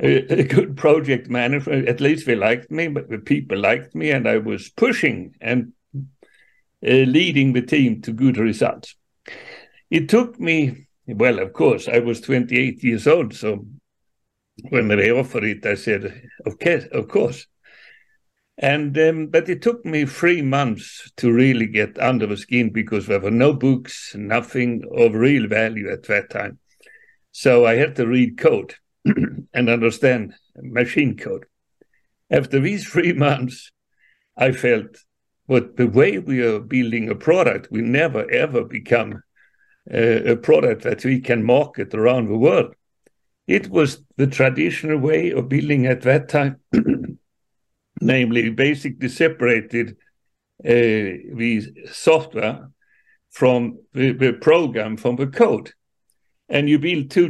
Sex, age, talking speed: male, 60-79, 145 wpm